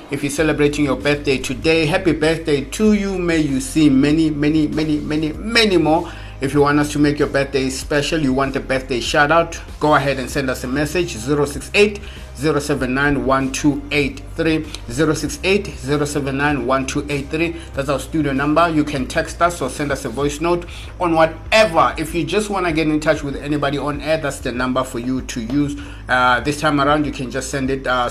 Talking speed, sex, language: 220 wpm, male, English